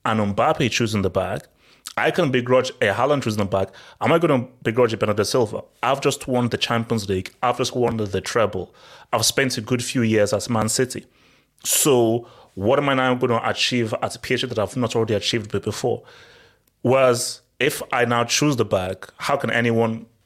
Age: 30-49